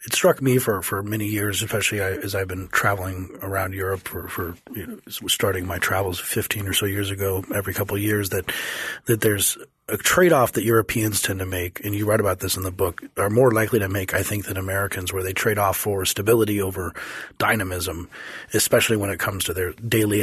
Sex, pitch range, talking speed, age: male, 95-110 Hz, 215 wpm, 30-49